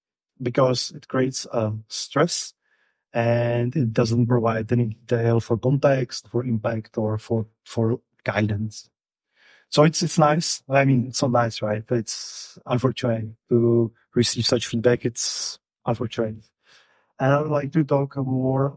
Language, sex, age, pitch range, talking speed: English, male, 30-49, 115-135 Hz, 145 wpm